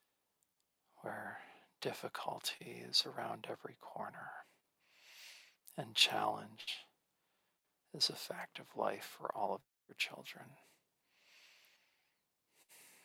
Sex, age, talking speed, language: male, 50-69, 85 wpm, English